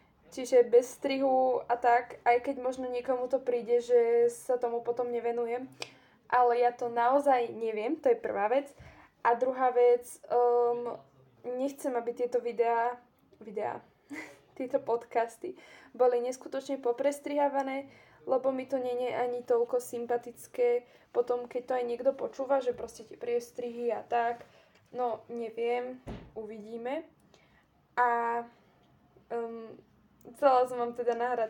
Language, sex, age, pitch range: Slovak, female, 20-39, 235-260 Hz